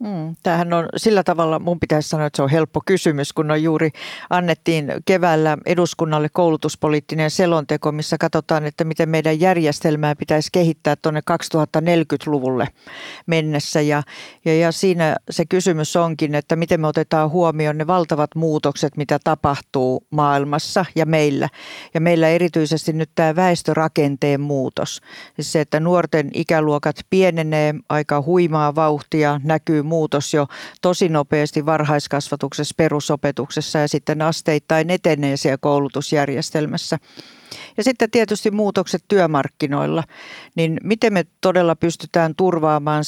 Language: Finnish